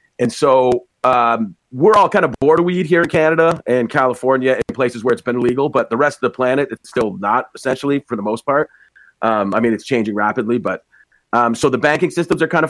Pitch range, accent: 115-140 Hz, American